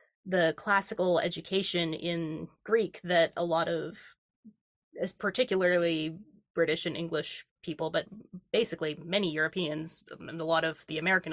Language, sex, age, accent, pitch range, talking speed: English, female, 20-39, American, 165-210 Hz, 125 wpm